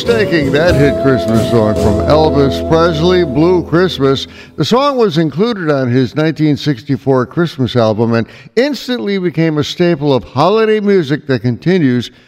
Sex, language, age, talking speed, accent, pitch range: male, English, 60-79, 140 wpm, American, 130-180 Hz